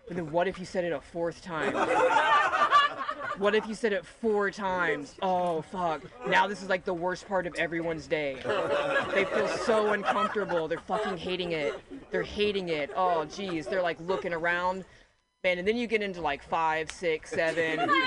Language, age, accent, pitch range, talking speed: English, 20-39, American, 175-225 Hz, 185 wpm